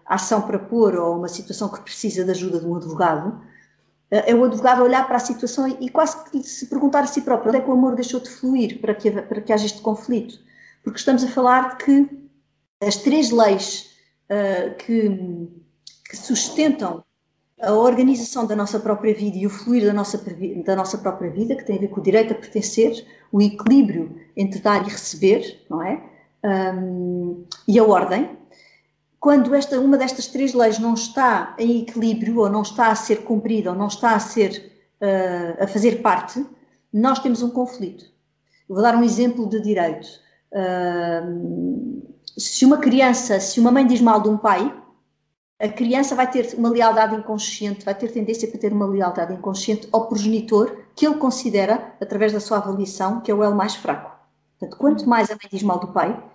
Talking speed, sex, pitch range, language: 185 wpm, female, 200-245 Hz, Portuguese